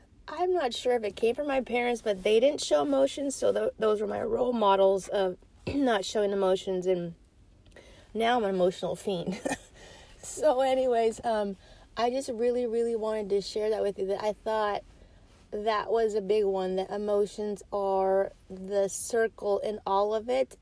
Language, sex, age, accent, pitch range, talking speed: English, female, 30-49, American, 195-240 Hz, 180 wpm